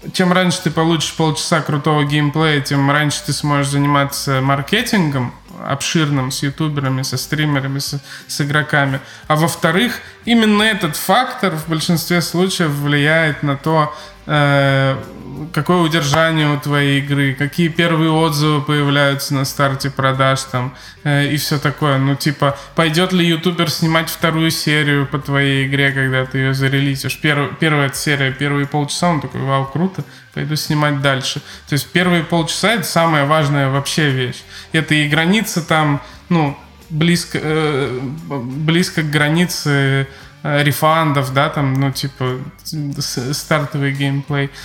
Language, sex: Russian, male